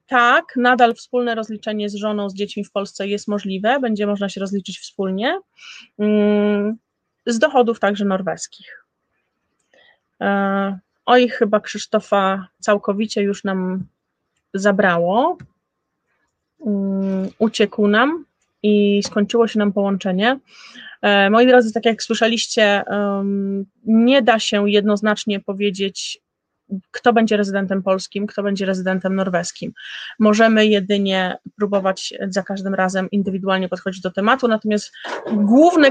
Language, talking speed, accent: Polish, 110 wpm, native